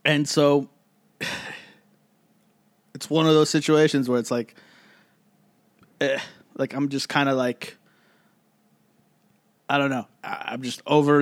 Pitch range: 120-150 Hz